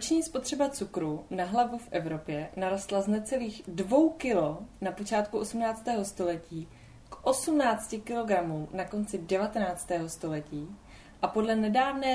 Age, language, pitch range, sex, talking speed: 20-39, Czech, 180-230 Hz, female, 130 wpm